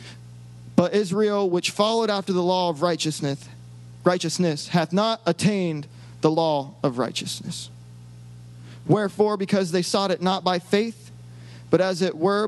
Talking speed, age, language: 140 wpm, 30-49, English